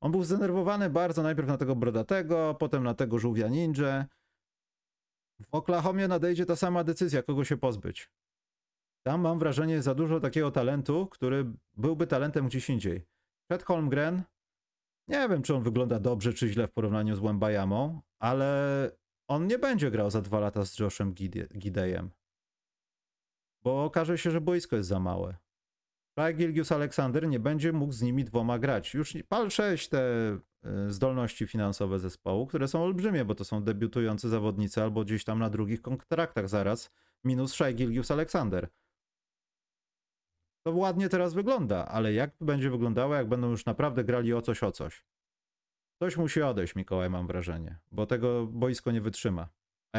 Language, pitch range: Polish, 105-155 Hz